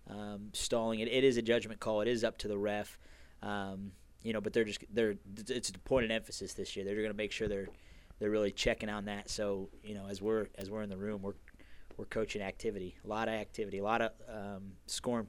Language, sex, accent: English, male, American